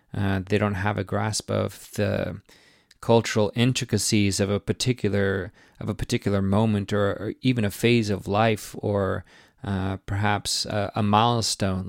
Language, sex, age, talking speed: English, male, 30-49, 150 wpm